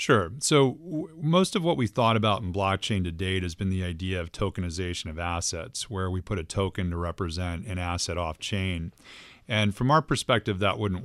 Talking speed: 195 wpm